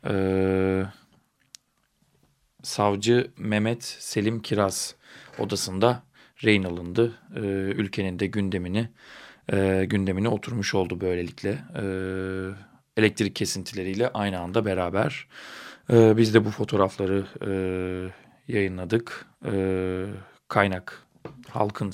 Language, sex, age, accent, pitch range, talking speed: Turkish, male, 40-59, native, 95-110 Hz, 90 wpm